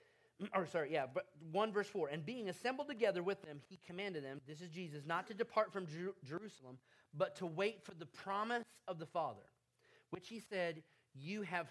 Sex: male